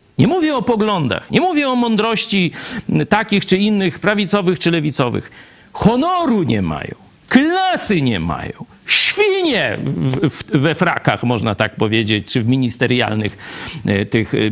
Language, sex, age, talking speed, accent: Polish, male, 50-69, 130 wpm, native